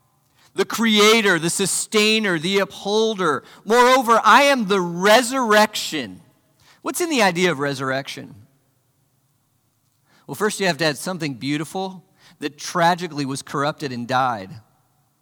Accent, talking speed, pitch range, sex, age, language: American, 120 wpm, 135-205 Hz, male, 40-59, English